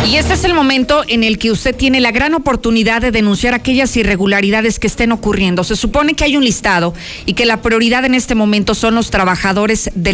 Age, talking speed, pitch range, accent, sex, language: 40-59, 220 wpm, 195-235 Hz, Mexican, female, Spanish